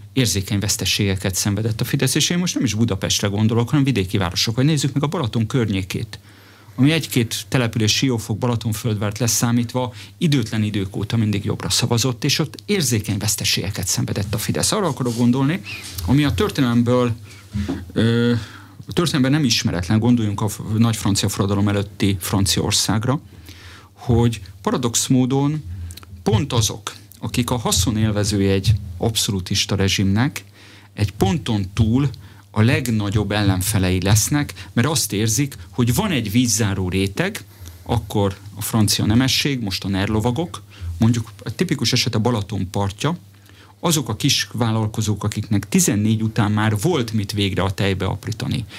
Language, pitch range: Hungarian, 100-125 Hz